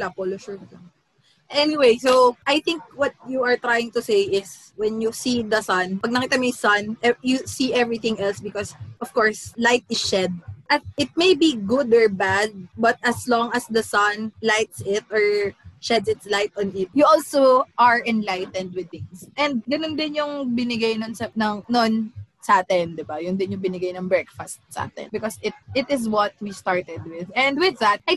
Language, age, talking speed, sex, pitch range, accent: Filipino, 20-39, 190 wpm, female, 195-250 Hz, native